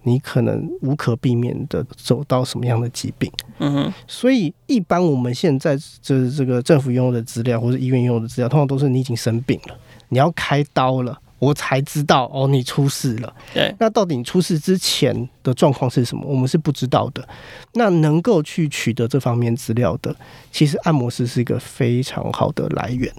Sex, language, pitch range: male, Chinese, 120-150 Hz